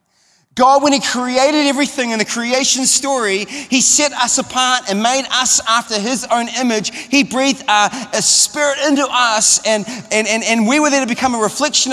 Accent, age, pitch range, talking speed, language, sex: Australian, 30-49, 240-290 Hz, 190 wpm, English, male